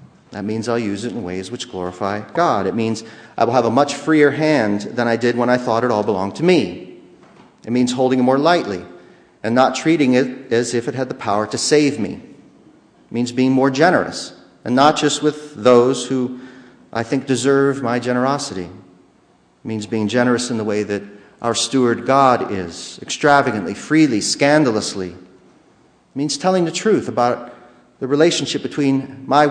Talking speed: 185 wpm